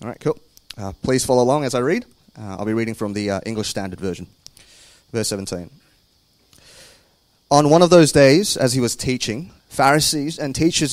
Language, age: English, 30-49